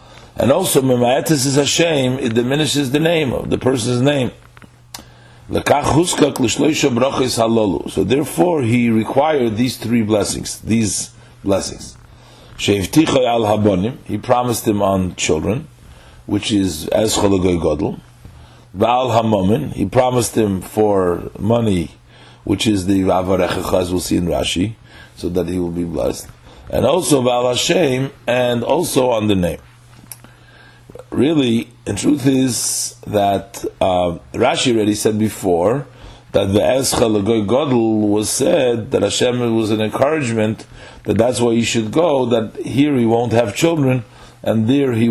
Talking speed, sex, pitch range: 130 wpm, male, 100-125 Hz